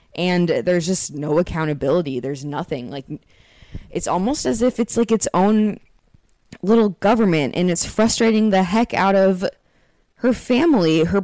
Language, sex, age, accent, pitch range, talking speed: English, female, 20-39, American, 160-200 Hz, 150 wpm